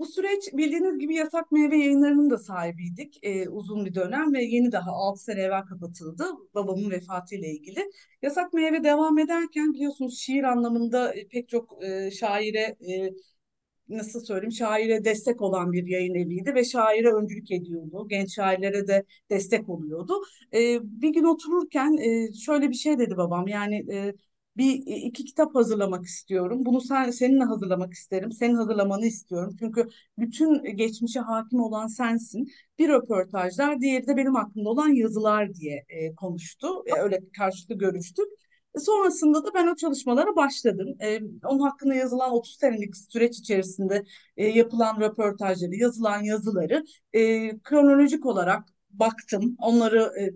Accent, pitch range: native, 195-275 Hz